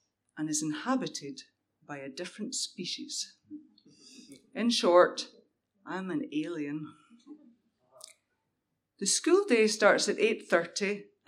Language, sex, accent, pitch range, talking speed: English, female, British, 200-295 Hz, 95 wpm